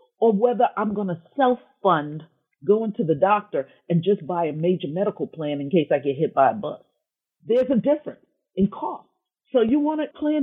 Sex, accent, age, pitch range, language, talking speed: female, American, 50-69, 180-300 Hz, English, 200 wpm